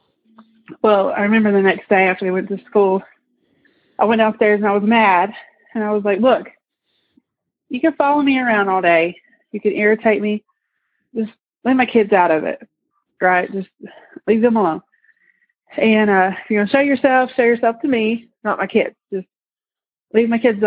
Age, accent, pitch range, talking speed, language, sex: 30-49, American, 195-235 Hz, 190 wpm, English, female